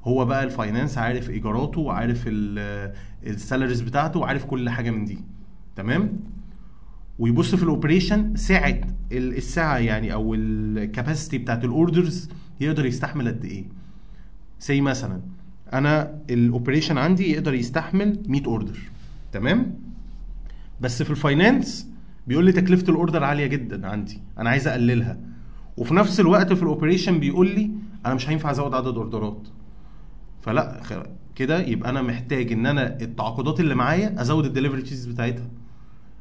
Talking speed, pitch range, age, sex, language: 130 wpm, 115-155 Hz, 30-49, male, Arabic